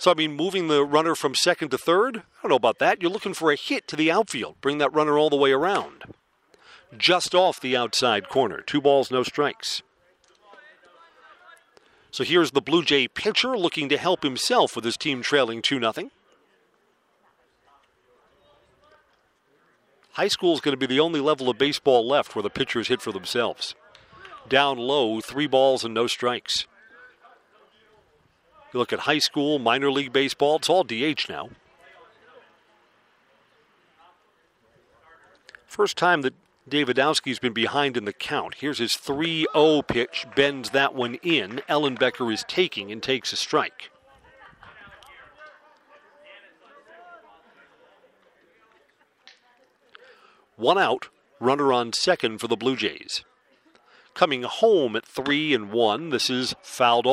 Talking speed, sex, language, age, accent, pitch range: 140 wpm, male, English, 40-59, American, 130-175 Hz